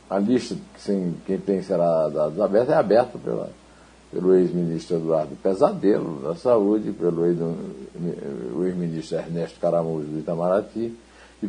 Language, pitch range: Portuguese, 85-105 Hz